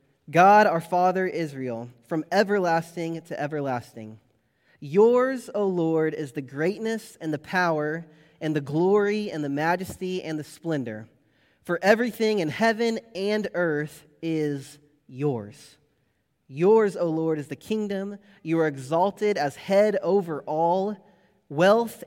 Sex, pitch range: male, 145-185 Hz